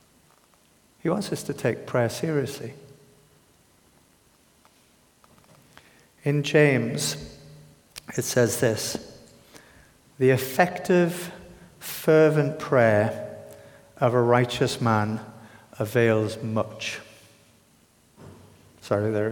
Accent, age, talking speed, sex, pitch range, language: British, 50-69, 75 wpm, male, 110-145 Hz, English